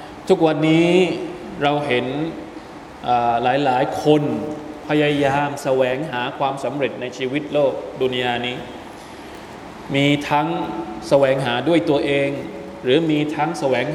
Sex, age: male, 20-39